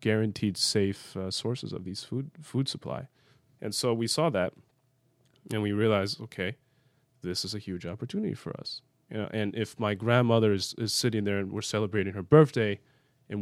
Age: 20-39